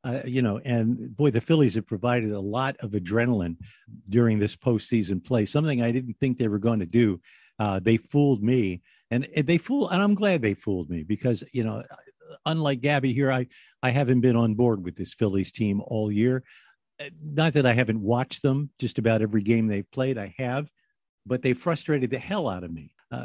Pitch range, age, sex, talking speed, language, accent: 110-145 Hz, 50-69, male, 210 wpm, English, American